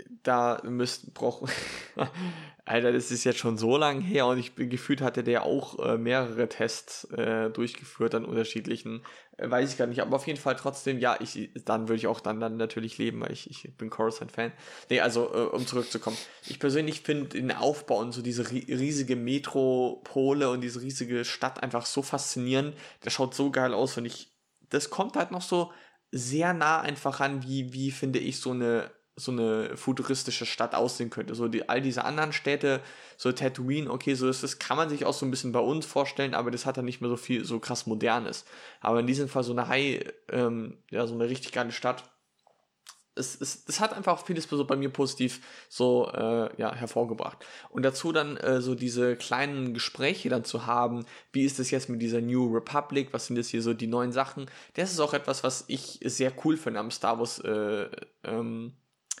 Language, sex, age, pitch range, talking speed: German, male, 20-39, 120-140 Hz, 205 wpm